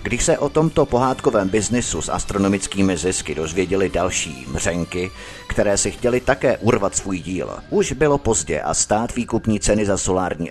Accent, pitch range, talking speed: native, 90-120 Hz, 160 wpm